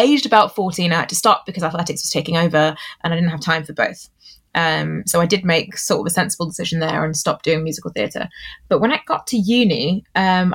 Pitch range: 165-205 Hz